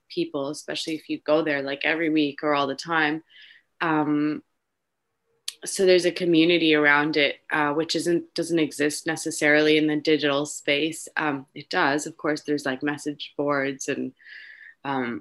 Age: 20-39